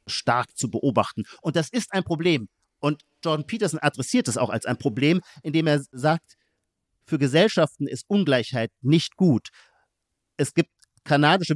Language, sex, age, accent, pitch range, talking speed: German, male, 50-69, German, 125-160 Hz, 150 wpm